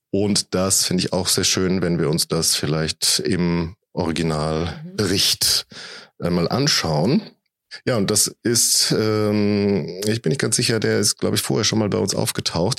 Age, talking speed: 40-59, 170 wpm